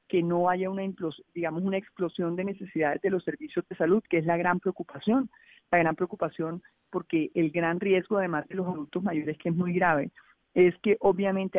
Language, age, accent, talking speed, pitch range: Spanish, 40-59, Colombian, 195 wpm, 165-200 Hz